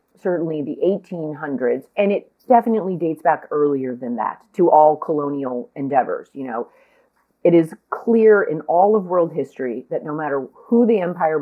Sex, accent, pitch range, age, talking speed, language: female, American, 155-215 Hz, 30-49, 165 wpm, English